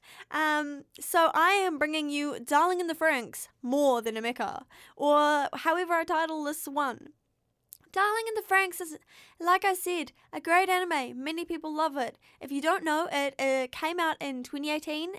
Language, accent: English, Australian